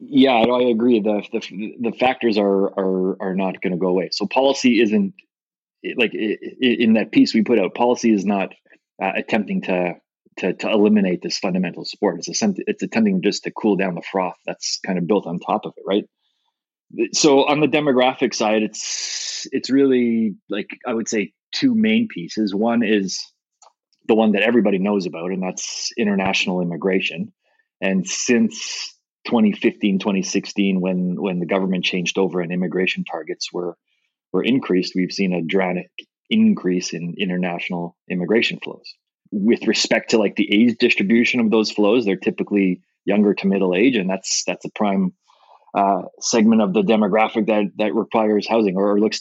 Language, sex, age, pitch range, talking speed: English, male, 30-49, 95-125 Hz, 170 wpm